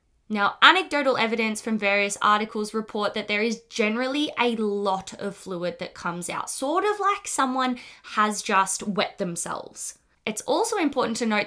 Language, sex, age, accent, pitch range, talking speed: English, female, 20-39, Australian, 195-240 Hz, 160 wpm